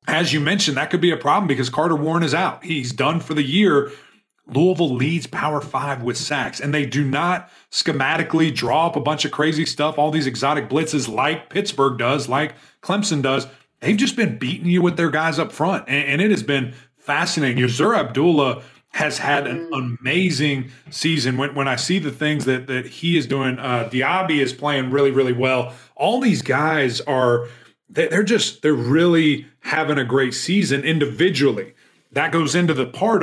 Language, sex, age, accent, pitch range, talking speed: English, male, 30-49, American, 135-165 Hz, 190 wpm